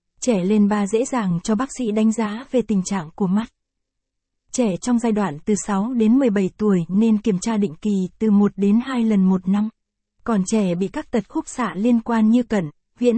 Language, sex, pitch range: Vietnamese, female, 200-235 Hz